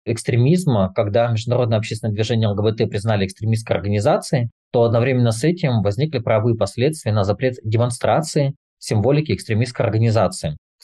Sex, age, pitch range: male, 20-39, 110-130 Hz